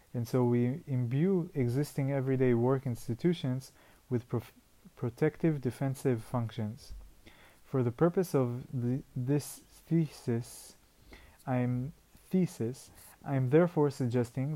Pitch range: 120-140 Hz